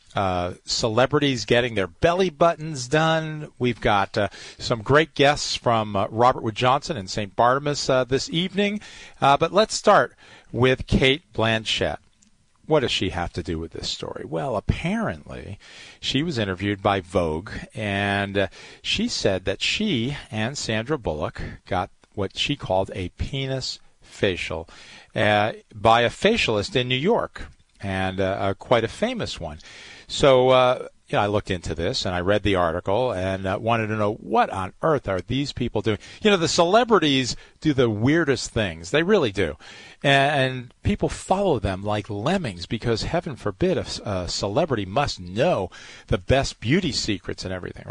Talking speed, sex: 165 wpm, male